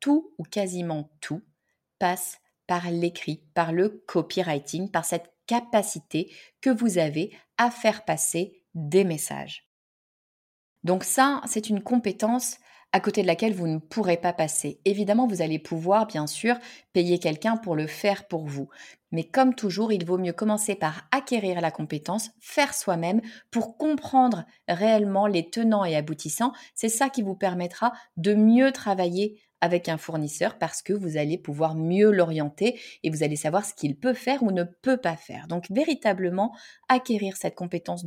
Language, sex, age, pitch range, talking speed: French, female, 30-49, 165-220 Hz, 165 wpm